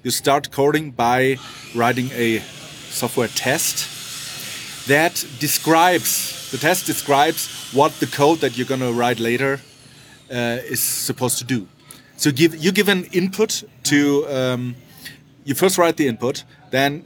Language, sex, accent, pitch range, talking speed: English, male, German, 125-150 Hz, 140 wpm